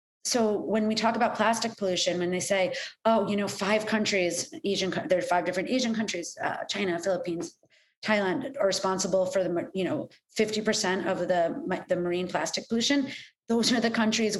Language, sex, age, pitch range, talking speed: English, female, 30-49, 180-230 Hz, 170 wpm